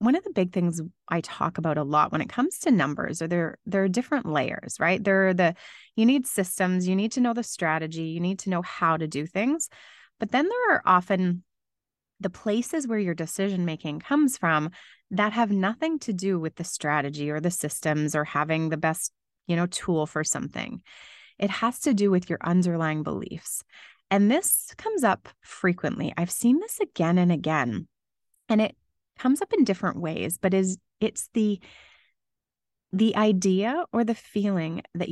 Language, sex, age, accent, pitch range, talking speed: English, female, 20-39, American, 165-230 Hz, 190 wpm